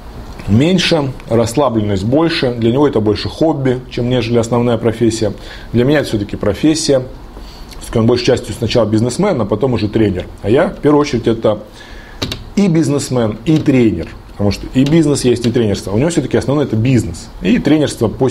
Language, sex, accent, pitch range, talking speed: Russian, male, native, 110-150 Hz, 175 wpm